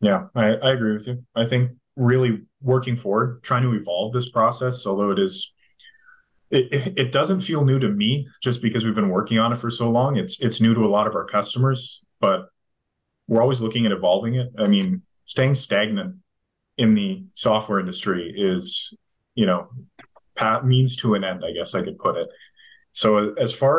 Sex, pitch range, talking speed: male, 105-130 Hz, 190 wpm